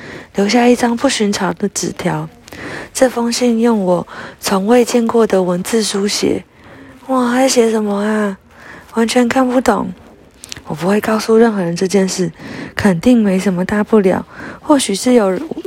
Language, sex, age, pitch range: Chinese, female, 20-39, 175-225 Hz